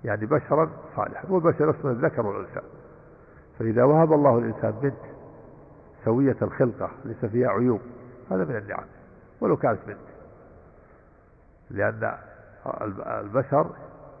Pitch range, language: 110-135 Hz, Arabic